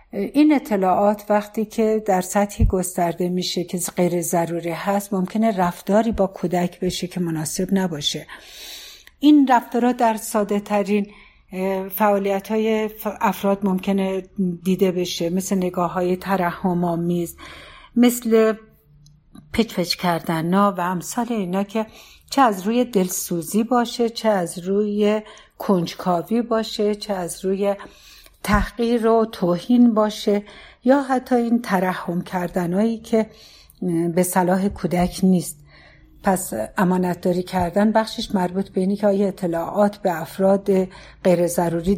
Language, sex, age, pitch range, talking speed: Persian, female, 60-79, 175-215 Hz, 120 wpm